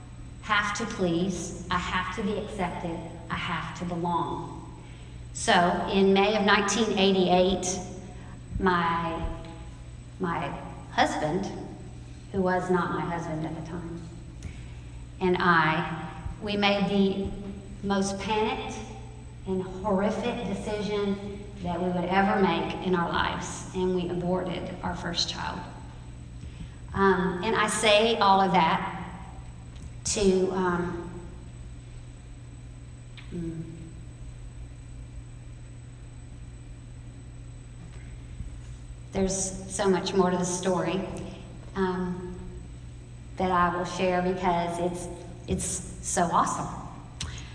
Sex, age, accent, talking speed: female, 40-59, American, 100 wpm